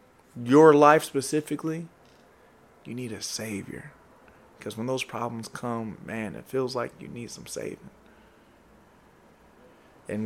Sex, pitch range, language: male, 110-140 Hz, English